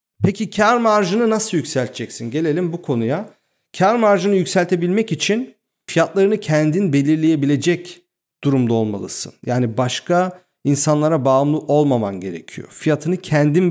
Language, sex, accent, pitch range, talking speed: Turkish, male, native, 135-165 Hz, 110 wpm